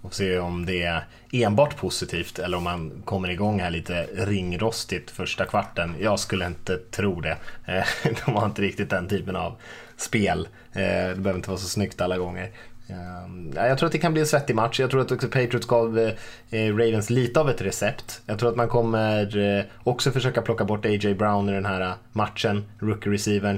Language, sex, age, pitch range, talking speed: Swedish, male, 20-39, 95-115 Hz, 195 wpm